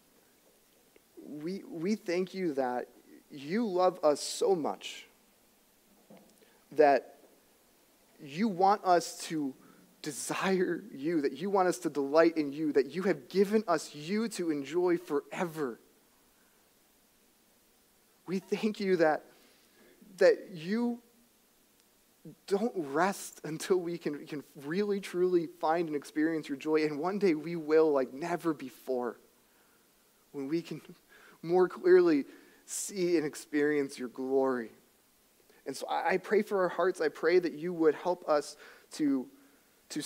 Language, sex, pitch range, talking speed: English, male, 150-195 Hz, 130 wpm